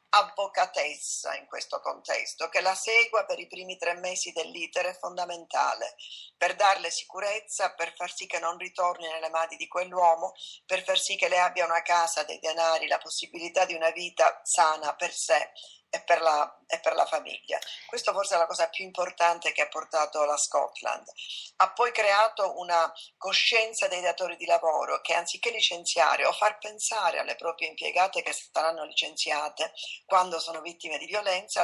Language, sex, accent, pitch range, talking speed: Italian, female, native, 165-190 Hz, 170 wpm